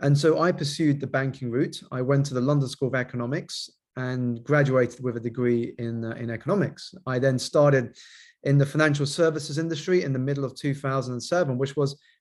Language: English